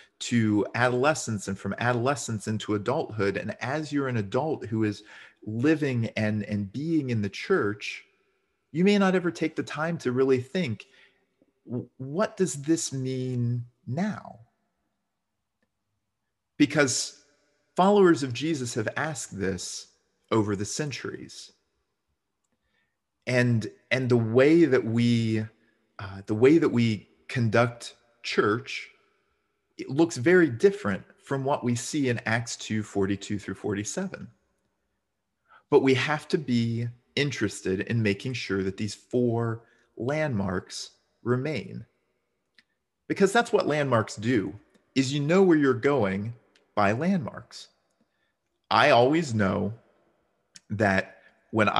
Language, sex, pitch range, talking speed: English, male, 105-145 Hz, 120 wpm